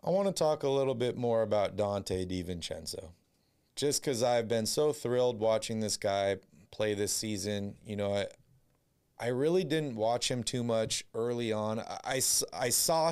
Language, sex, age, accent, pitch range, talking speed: English, male, 30-49, American, 105-125 Hz, 180 wpm